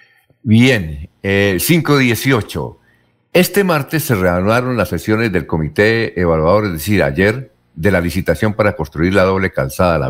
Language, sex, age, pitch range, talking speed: Spanish, male, 50-69, 85-120 Hz, 145 wpm